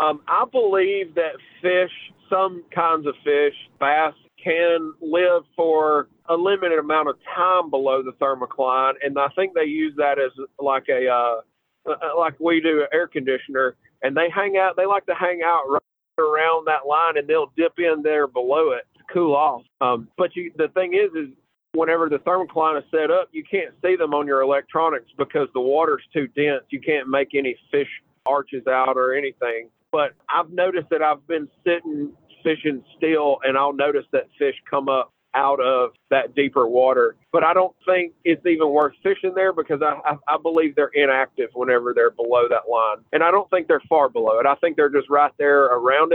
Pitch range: 135-180 Hz